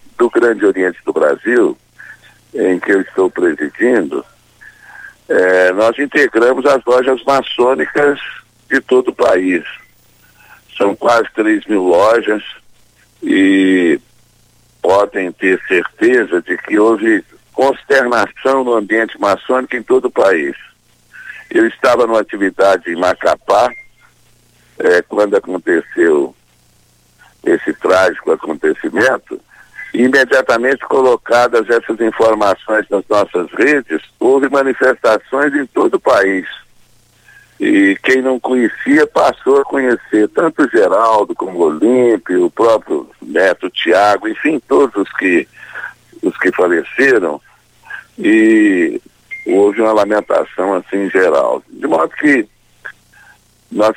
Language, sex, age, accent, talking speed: Portuguese, male, 60-79, Brazilian, 105 wpm